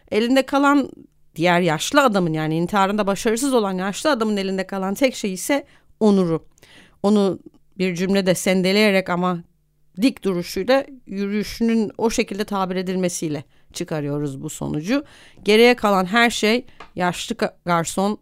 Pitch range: 165-215 Hz